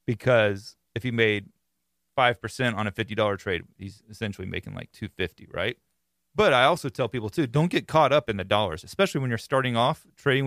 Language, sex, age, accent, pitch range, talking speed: English, male, 30-49, American, 105-135 Hz, 195 wpm